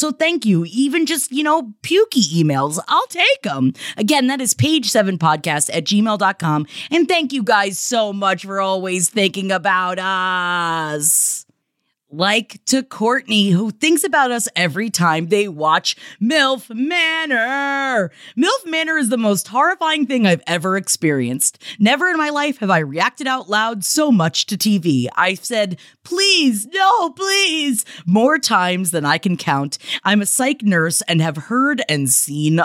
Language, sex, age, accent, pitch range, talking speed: English, female, 30-49, American, 180-285 Hz, 160 wpm